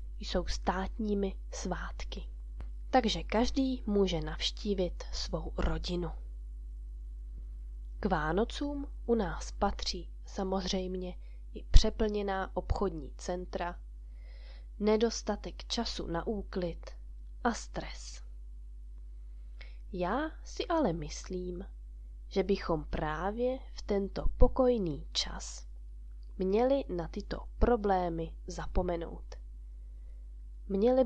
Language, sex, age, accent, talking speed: Czech, female, 20-39, native, 80 wpm